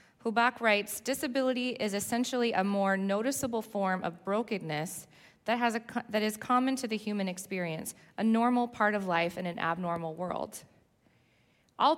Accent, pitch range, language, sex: American, 185-230 Hz, English, female